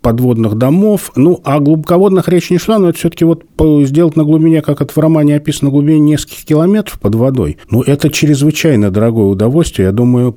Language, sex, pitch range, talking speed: Russian, male, 130-185 Hz, 185 wpm